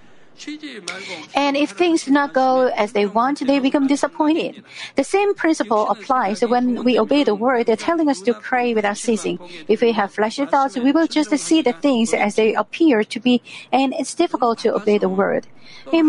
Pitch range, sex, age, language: 225-280 Hz, female, 40-59, Korean